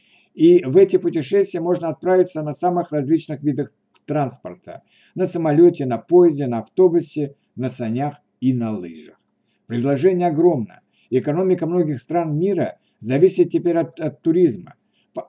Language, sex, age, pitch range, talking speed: Russian, male, 60-79, 130-175 Hz, 135 wpm